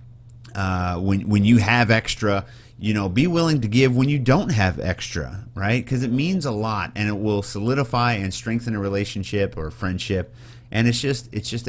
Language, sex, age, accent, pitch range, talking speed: English, male, 30-49, American, 100-120 Hz, 200 wpm